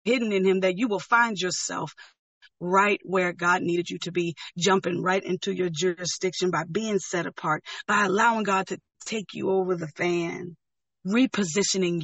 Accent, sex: American, female